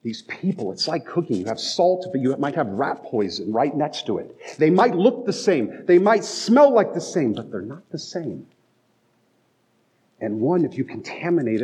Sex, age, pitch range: male, 40-59, 135-195 Hz